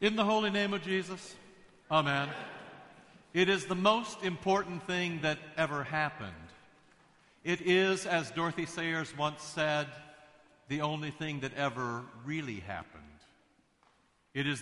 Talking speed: 130 wpm